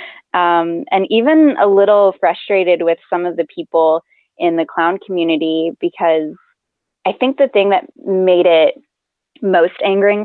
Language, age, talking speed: English, 20-39, 145 wpm